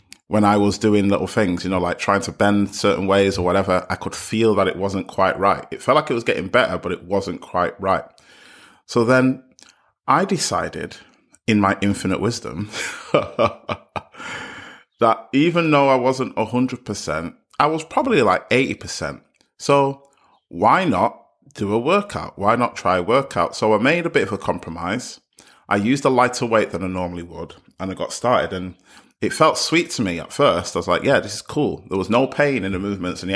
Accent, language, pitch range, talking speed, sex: British, English, 90-115 Hz, 205 wpm, male